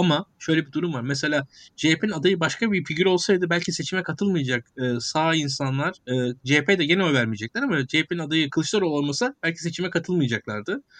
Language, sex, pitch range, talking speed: Turkish, male, 125-160 Hz, 170 wpm